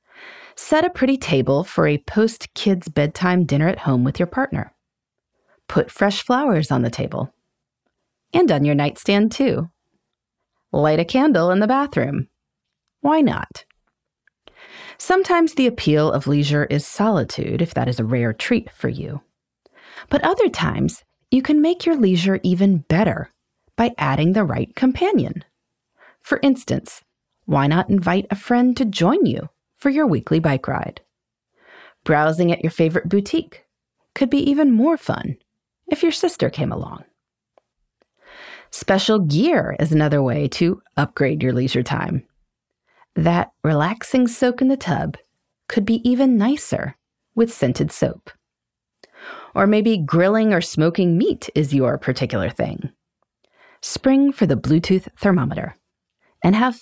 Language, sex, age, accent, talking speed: English, female, 30-49, American, 140 wpm